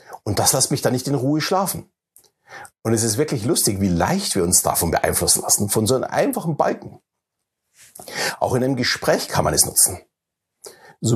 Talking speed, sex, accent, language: 190 wpm, male, German, German